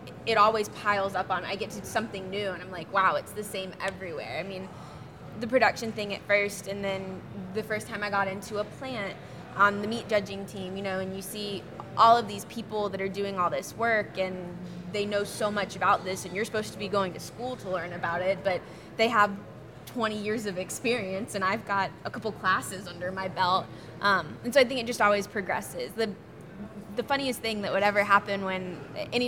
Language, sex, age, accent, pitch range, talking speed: English, female, 20-39, American, 190-220 Hz, 220 wpm